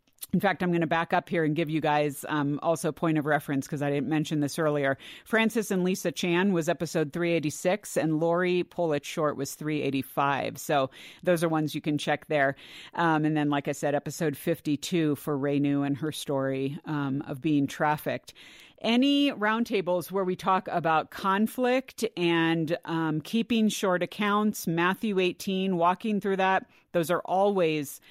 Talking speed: 175 wpm